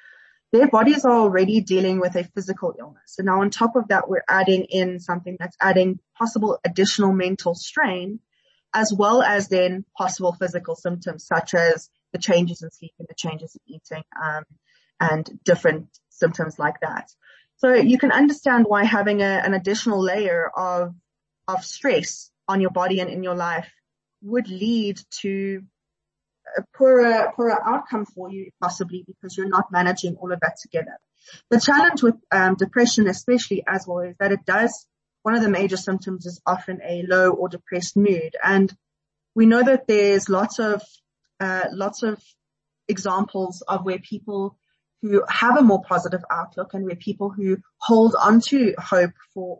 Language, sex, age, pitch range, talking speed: English, female, 20-39, 175-205 Hz, 170 wpm